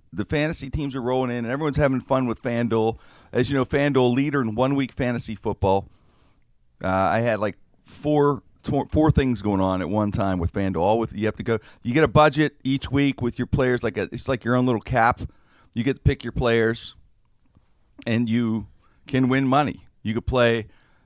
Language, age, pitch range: English, 40-59, 110-140 Hz